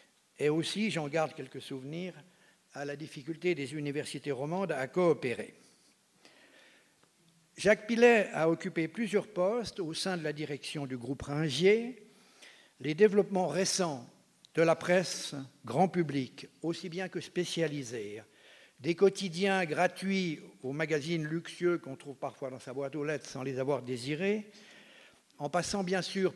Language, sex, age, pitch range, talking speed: French, male, 60-79, 150-185 Hz, 140 wpm